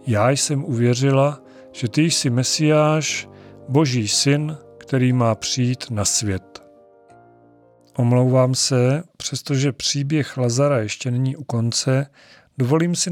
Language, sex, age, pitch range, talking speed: Czech, male, 40-59, 120-155 Hz, 115 wpm